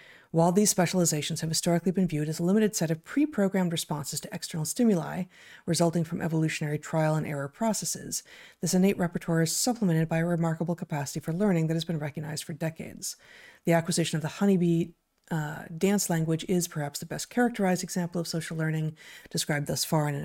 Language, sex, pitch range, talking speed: English, female, 160-190 Hz, 185 wpm